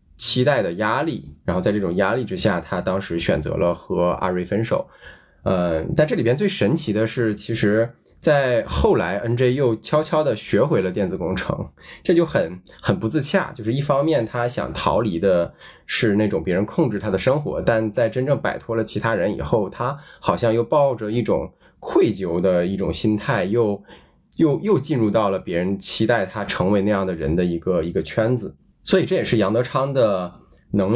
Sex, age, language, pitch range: male, 20-39, Chinese, 100-120 Hz